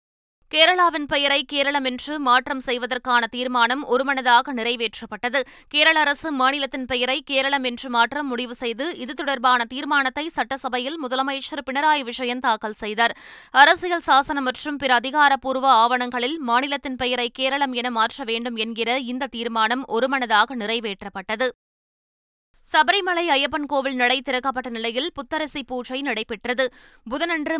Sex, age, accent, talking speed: female, 20-39, native, 115 wpm